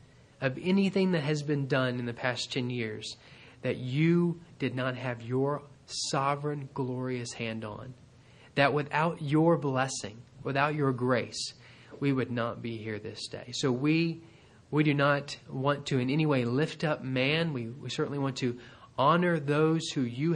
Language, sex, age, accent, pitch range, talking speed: English, male, 30-49, American, 120-140 Hz, 170 wpm